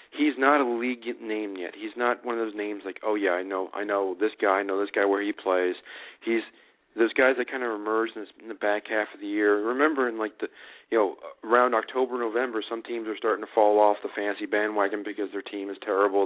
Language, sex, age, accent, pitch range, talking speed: English, male, 40-59, American, 95-115 Hz, 245 wpm